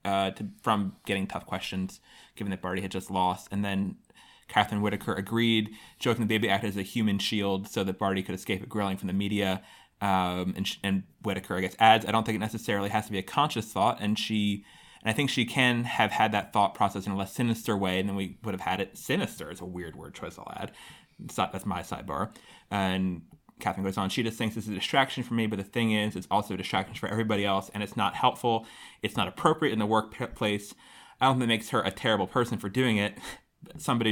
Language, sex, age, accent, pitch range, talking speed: English, male, 30-49, American, 100-120 Hz, 245 wpm